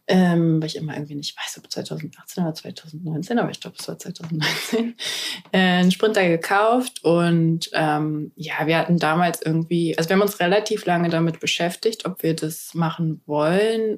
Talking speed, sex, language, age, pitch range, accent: 175 wpm, female, German, 20-39, 165-195 Hz, German